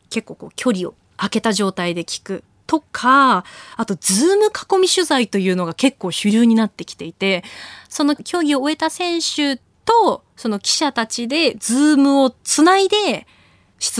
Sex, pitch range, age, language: female, 190-270 Hz, 20-39, Japanese